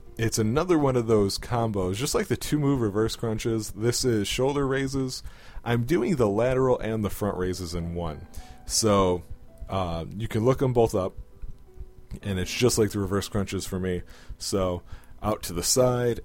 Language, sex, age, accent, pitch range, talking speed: English, male, 30-49, American, 90-115 Hz, 180 wpm